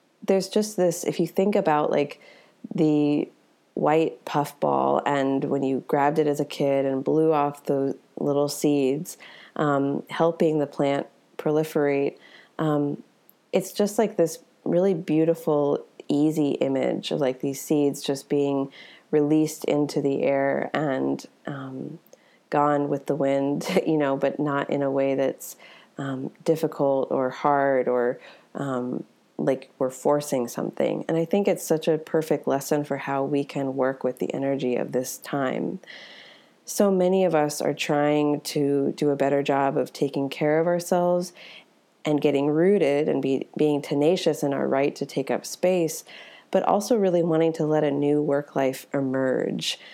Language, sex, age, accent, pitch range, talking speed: English, female, 30-49, American, 140-160 Hz, 160 wpm